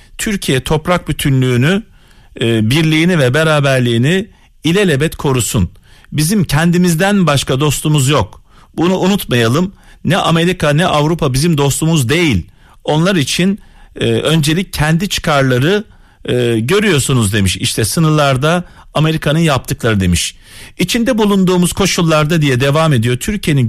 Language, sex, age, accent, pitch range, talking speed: Turkish, male, 40-59, native, 125-180 Hz, 110 wpm